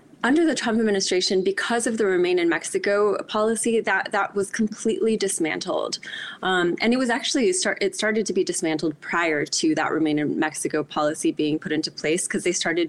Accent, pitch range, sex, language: American, 165-220 Hz, female, Spanish